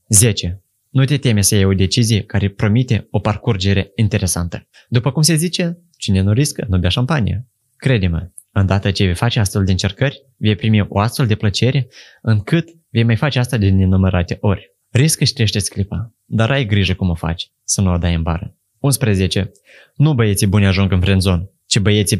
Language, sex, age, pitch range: Romanian, male, 20-39, 95-130 Hz